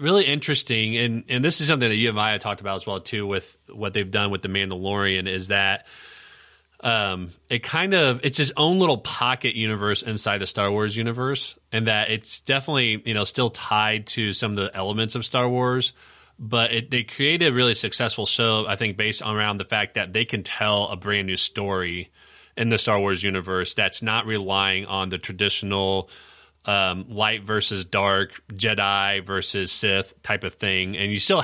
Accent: American